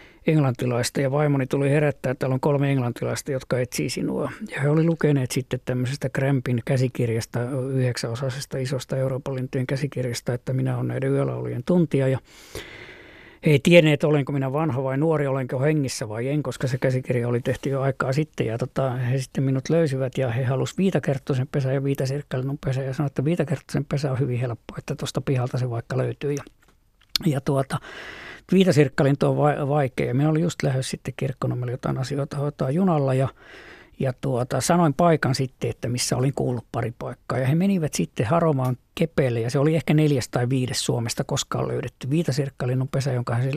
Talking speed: 180 wpm